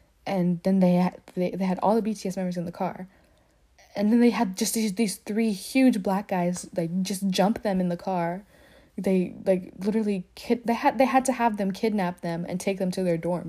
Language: English